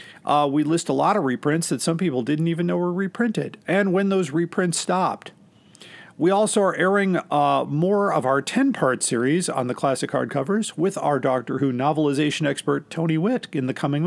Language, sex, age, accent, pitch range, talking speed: English, male, 50-69, American, 150-195 Hz, 190 wpm